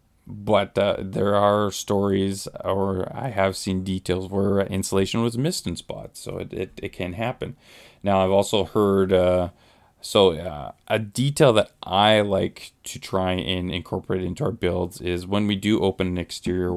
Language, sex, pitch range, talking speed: English, male, 90-100 Hz, 165 wpm